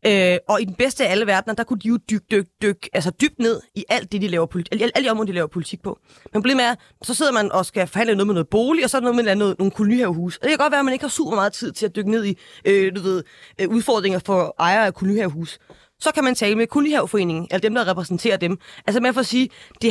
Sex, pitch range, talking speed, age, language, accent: female, 185-240 Hz, 290 wpm, 30-49, Danish, native